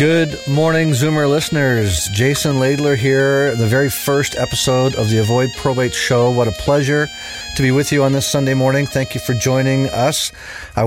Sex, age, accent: male, 40-59, American